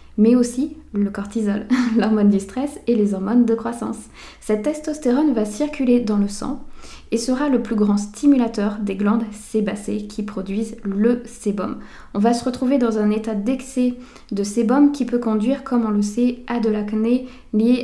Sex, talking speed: female, 180 wpm